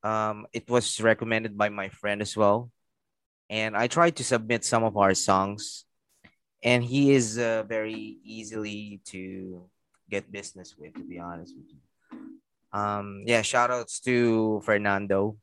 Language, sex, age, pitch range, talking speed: English, male, 20-39, 95-115 Hz, 150 wpm